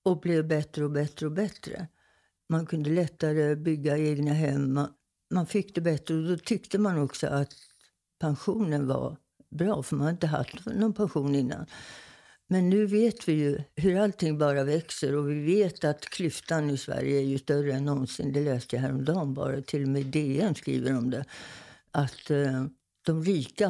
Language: English